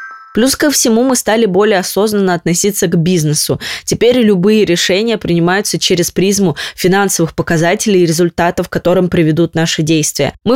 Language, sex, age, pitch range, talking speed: Russian, female, 20-39, 170-205 Hz, 140 wpm